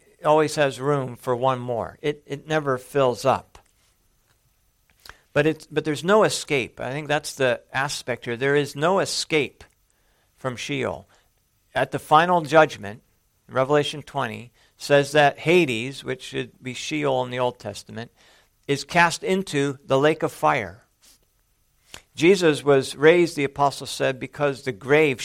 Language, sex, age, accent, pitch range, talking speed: English, male, 50-69, American, 115-150 Hz, 145 wpm